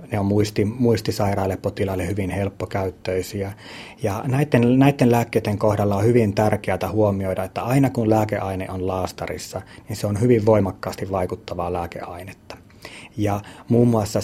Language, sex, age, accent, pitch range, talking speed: Finnish, male, 30-49, native, 95-110 Hz, 130 wpm